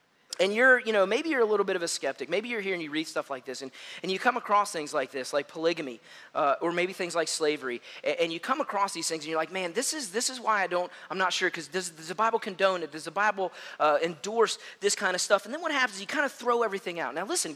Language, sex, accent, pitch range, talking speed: English, male, American, 170-255 Hz, 295 wpm